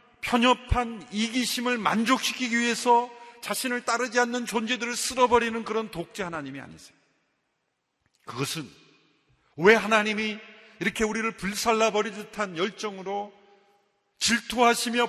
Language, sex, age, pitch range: Korean, male, 40-59, 140-235 Hz